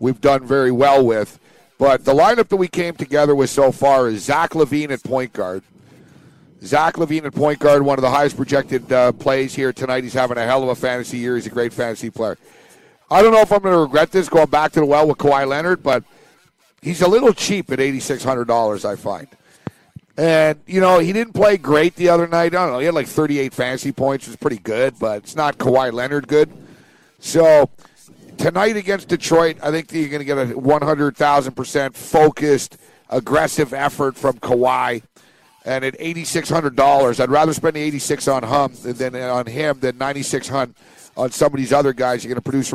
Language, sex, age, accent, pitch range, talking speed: English, male, 50-69, American, 130-160 Hz, 205 wpm